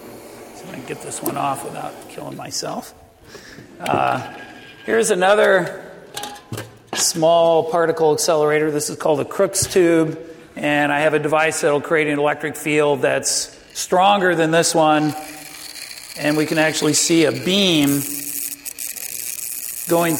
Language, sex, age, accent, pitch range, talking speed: English, male, 50-69, American, 145-170 Hz, 130 wpm